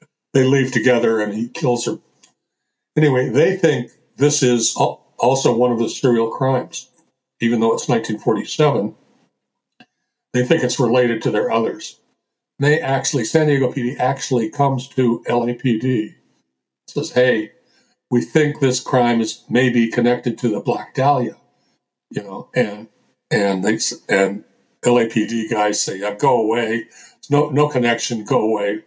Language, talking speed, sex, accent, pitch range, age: English, 145 wpm, male, American, 115-135 Hz, 60-79